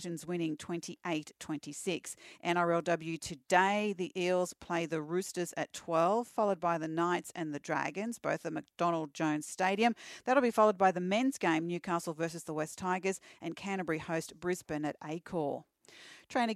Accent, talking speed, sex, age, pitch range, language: Australian, 150 wpm, female, 40-59, 165-205 Hz, English